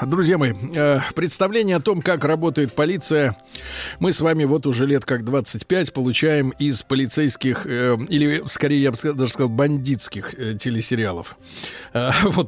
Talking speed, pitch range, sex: 135 wpm, 125-165 Hz, male